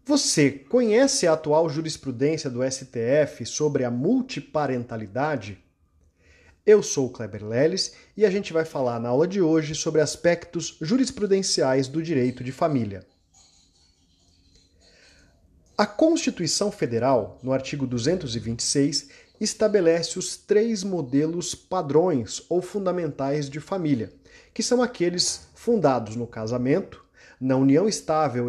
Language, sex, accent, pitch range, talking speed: Portuguese, male, Brazilian, 125-195 Hz, 115 wpm